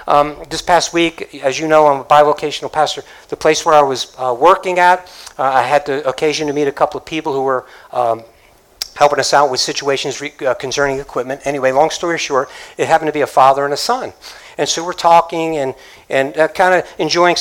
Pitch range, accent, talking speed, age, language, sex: 130-155 Hz, American, 225 wpm, 60-79, English, male